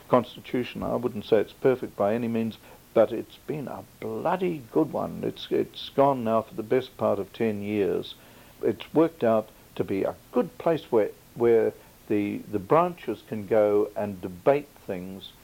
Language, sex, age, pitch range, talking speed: English, male, 60-79, 105-145 Hz, 175 wpm